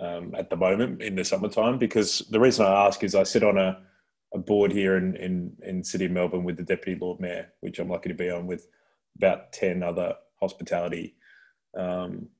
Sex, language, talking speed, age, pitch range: male, English, 210 wpm, 20-39, 90-95 Hz